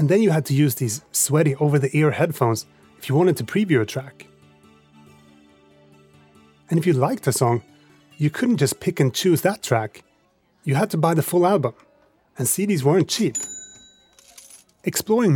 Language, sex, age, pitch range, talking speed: English, male, 30-49, 130-175 Hz, 170 wpm